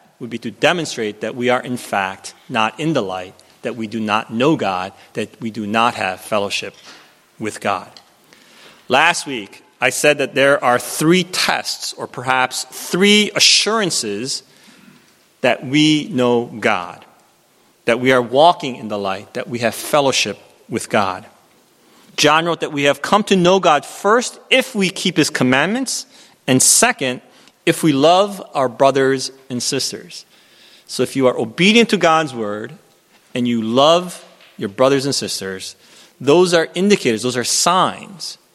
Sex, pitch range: male, 115-165 Hz